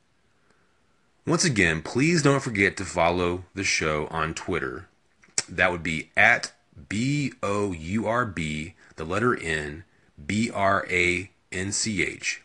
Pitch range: 85-110 Hz